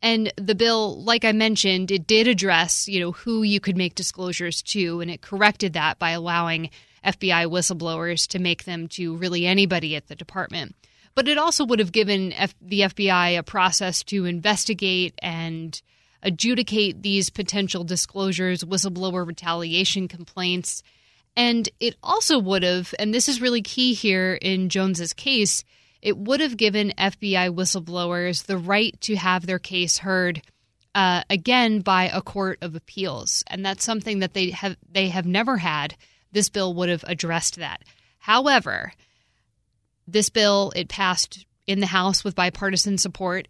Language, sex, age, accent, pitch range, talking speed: English, female, 20-39, American, 175-205 Hz, 160 wpm